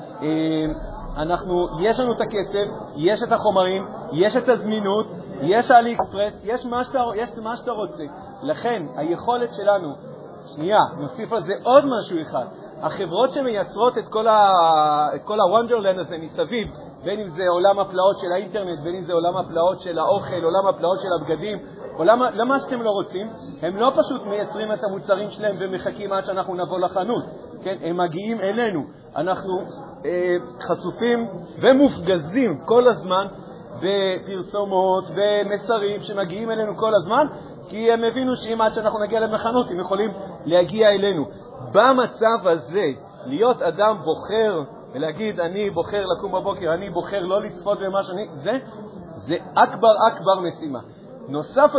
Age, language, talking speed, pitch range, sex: 40-59, Hebrew, 140 wpm, 180-225 Hz, male